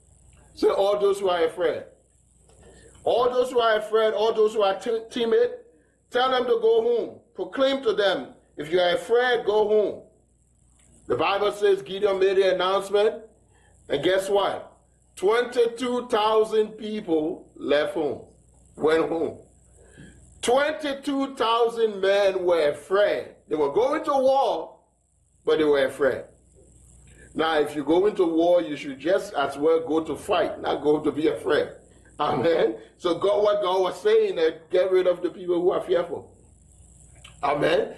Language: English